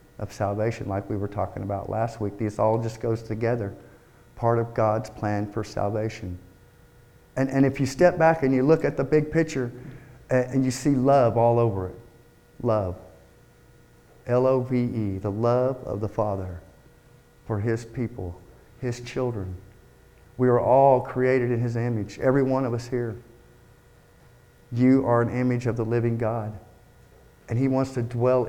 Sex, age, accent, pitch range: male, 50-69, American, 110-135 Hz